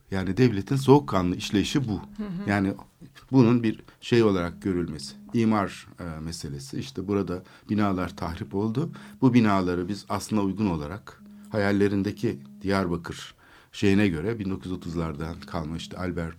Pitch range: 90-120 Hz